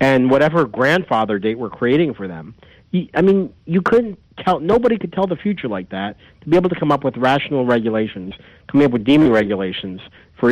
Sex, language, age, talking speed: male, English, 50-69, 205 wpm